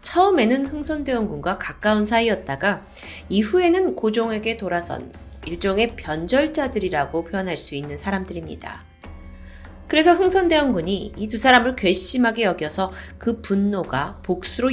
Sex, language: female, Korean